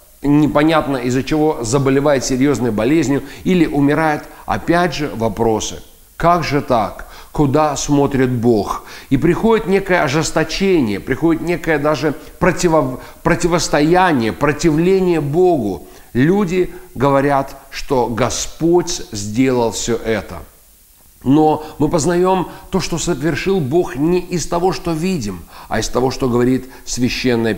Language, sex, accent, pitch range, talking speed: Russian, male, native, 130-175 Hz, 115 wpm